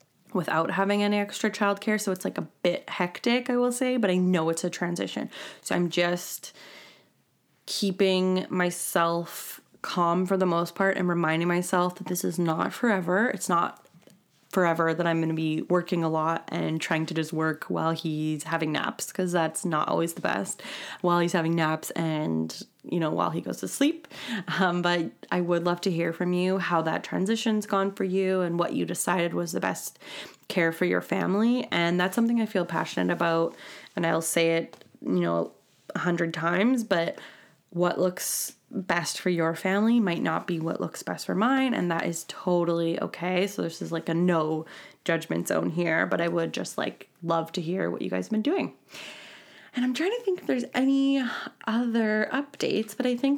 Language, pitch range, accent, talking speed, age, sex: English, 170-205 Hz, American, 195 wpm, 20-39, female